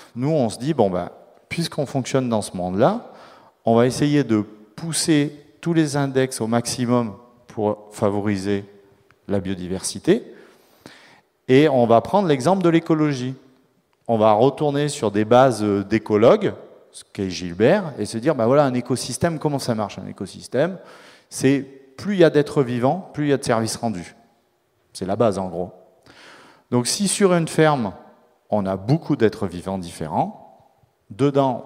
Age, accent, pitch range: 30-49, French, 105-145 Hz